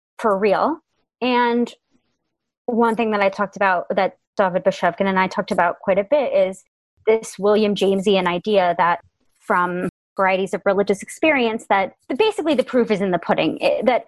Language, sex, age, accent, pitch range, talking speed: English, female, 30-49, American, 180-225 Hz, 170 wpm